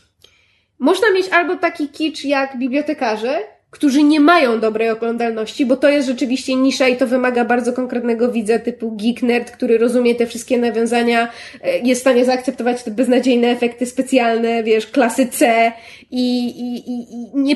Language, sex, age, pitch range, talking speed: Polish, female, 20-39, 240-300 Hz, 155 wpm